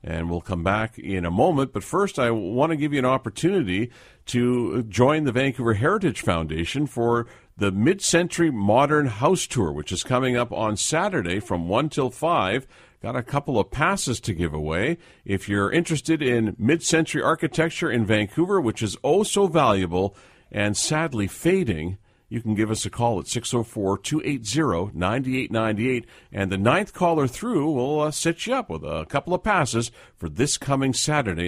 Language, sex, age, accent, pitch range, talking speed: English, male, 50-69, American, 105-150 Hz, 170 wpm